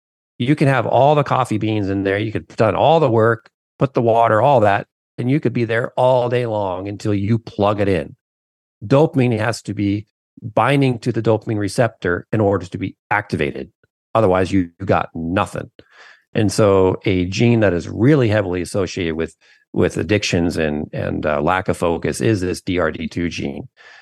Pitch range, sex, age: 85-115 Hz, male, 40-59